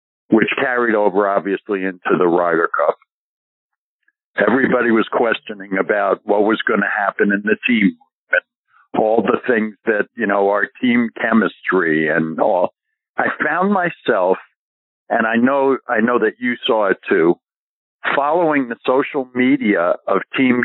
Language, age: English, 60-79